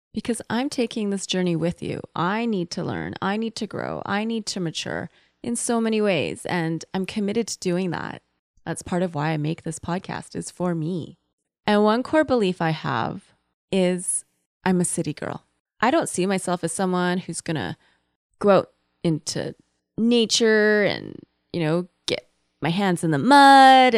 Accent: American